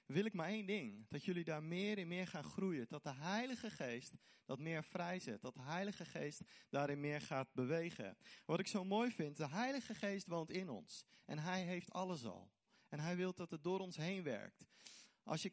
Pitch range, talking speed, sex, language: 145-190 Hz, 215 wpm, male, Dutch